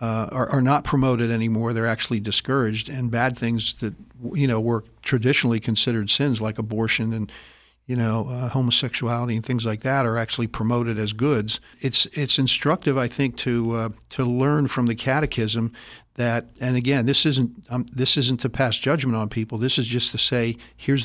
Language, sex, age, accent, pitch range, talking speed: English, male, 50-69, American, 115-130 Hz, 190 wpm